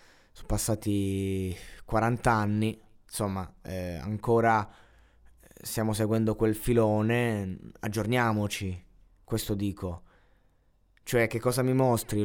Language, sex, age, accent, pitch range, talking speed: Italian, male, 20-39, native, 100-120 Hz, 95 wpm